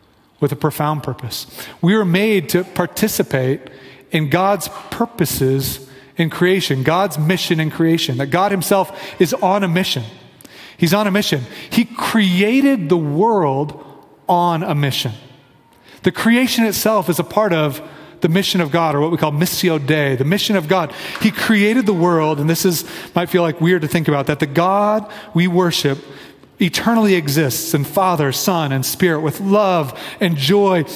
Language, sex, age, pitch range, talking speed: English, male, 40-59, 155-205 Hz, 170 wpm